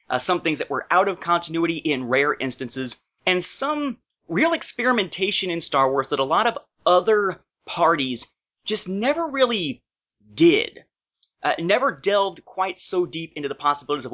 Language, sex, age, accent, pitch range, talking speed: English, male, 30-49, American, 135-190 Hz, 160 wpm